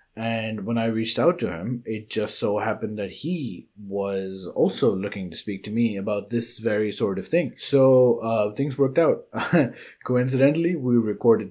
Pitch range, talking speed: 100-125 Hz, 175 wpm